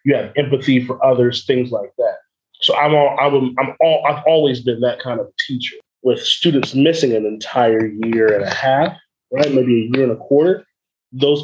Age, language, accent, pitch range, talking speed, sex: 20-39, English, American, 120-150 Hz, 205 wpm, male